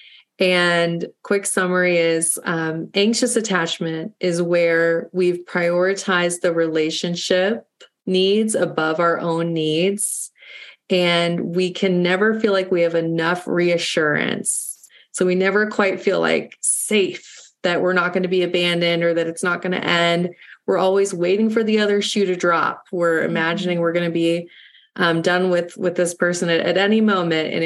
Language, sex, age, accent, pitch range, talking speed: English, female, 30-49, American, 170-200 Hz, 160 wpm